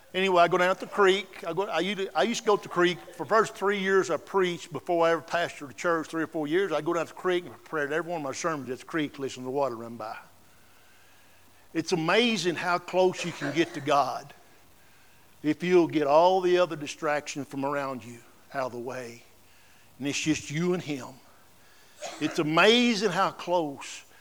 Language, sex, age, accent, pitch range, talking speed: English, male, 60-79, American, 135-180 Hz, 230 wpm